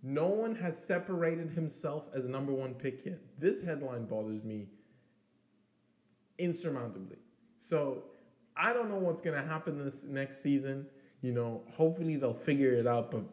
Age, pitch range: 20-39, 120-160 Hz